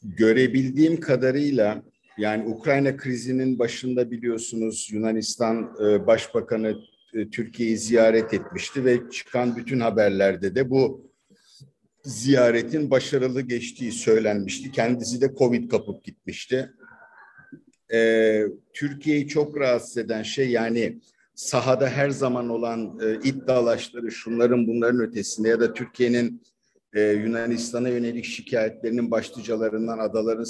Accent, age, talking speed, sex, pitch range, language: native, 50-69, 95 wpm, male, 110-125 Hz, Turkish